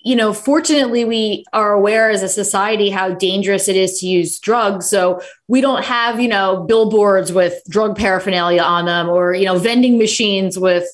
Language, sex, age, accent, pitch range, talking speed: English, female, 20-39, American, 190-245 Hz, 180 wpm